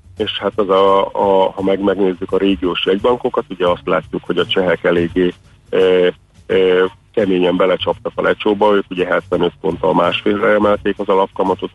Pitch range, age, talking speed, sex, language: 90-105 Hz, 40-59, 165 wpm, male, Hungarian